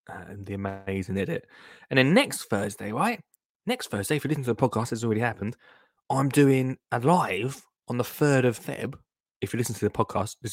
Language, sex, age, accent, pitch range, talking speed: English, male, 20-39, British, 100-130 Hz, 210 wpm